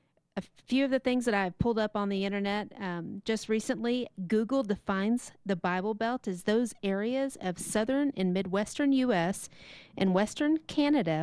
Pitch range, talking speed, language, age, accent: 185-240 Hz, 165 wpm, English, 40-59, American